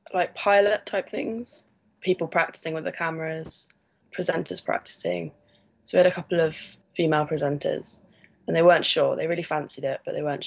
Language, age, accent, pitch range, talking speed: English, 10-29, British, 155-175 Hz, 170 wpm